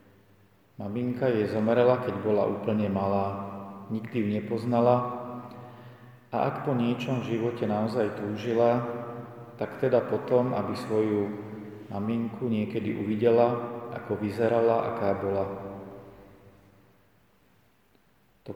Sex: male